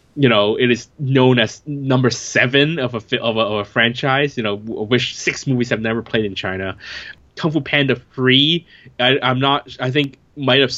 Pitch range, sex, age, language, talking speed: 115-135 Hz, male, 20-39, English, 200 wpm